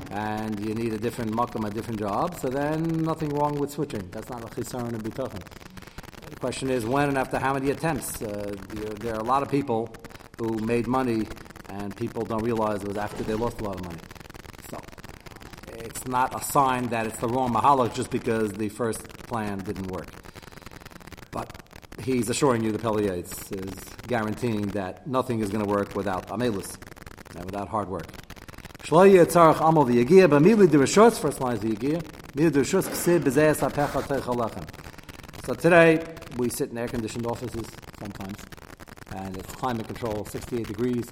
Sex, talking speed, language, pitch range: male, 150 wpm, English, 105-130 Hz